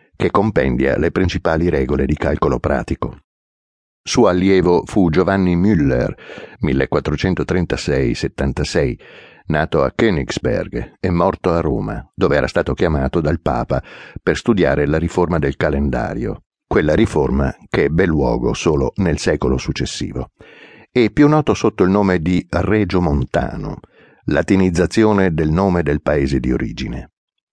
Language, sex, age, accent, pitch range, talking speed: Italian, male, 60-79, native, 70-95 Hz, 125 wpm